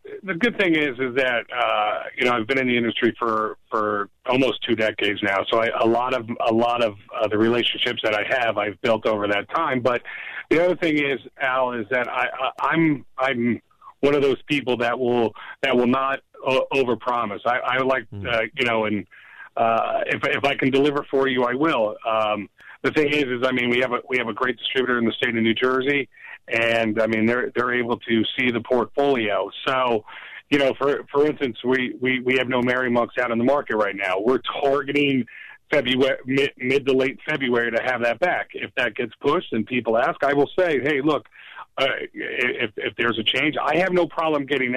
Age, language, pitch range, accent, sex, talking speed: 40-59, English, 120-140 Hz, American, male, 215 wpm